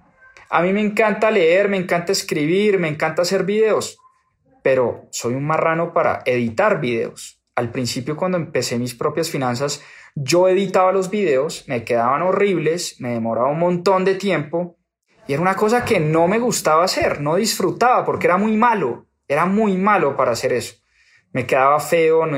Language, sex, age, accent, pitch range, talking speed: Spanish, male, 20-39, Colombian, 125-190 Hz, 170 wpm